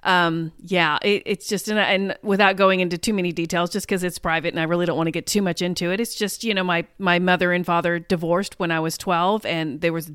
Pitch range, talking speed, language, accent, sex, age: 175-230 Hz, 265 wpm, English, American, female, 30-49